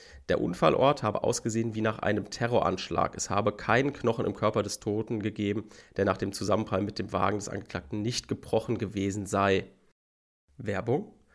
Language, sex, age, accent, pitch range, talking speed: German, male, 30-49, German, 105-135 Hz, 165 wpm